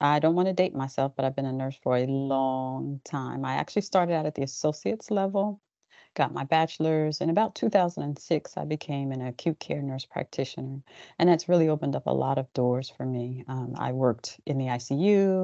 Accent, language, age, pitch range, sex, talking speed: American, English, 40-59, 135-165 Hz, female, 205 wpm